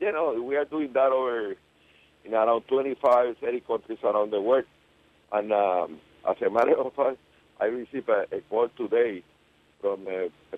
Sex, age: male, 60-79